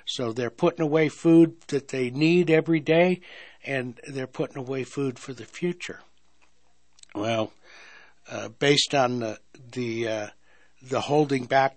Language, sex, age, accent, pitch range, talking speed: English, male, 60-79, American, 115-150 Hz, 145 wpm